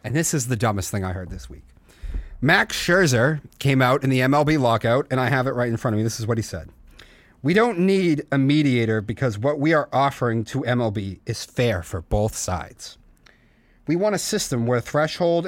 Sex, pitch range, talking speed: male, 110-150 Hz, 215 wpm